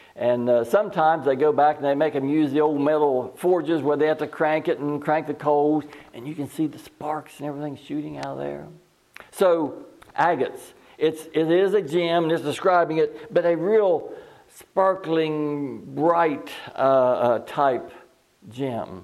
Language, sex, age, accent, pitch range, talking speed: English, male, 60-79, American, 125-160 Hz, 175 wpm